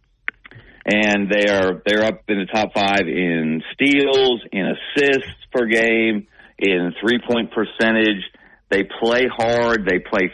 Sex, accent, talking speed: male, American, 140 wpm